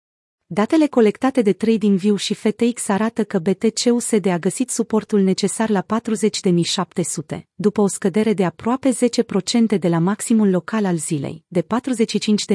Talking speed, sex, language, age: 140 wpm, female, Romanian, 30-49